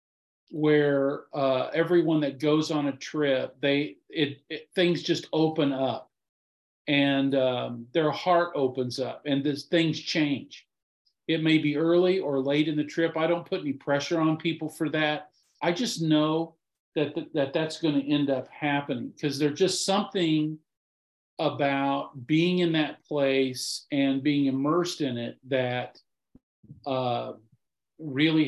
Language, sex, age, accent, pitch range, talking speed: English, male, 50-69, American, 135-160 Hz, 150 wpm